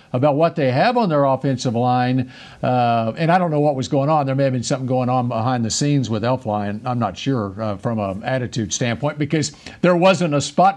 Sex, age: male, 50-69